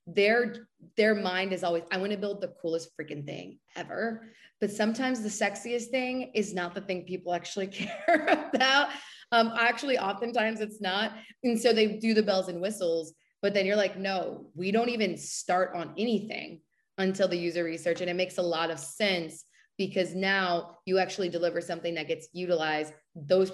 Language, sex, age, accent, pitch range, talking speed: English, female, 20-39, American, 170-205 Hz, 185 wpm